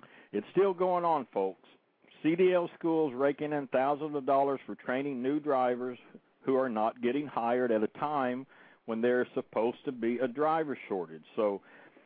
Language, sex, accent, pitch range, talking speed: English, male, American, 120-150 Hz, 170 wpm